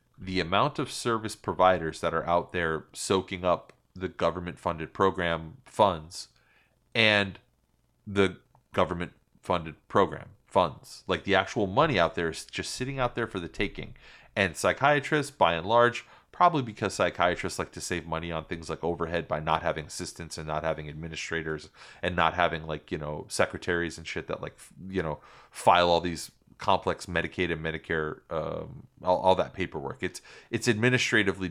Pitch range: 80-105 Hz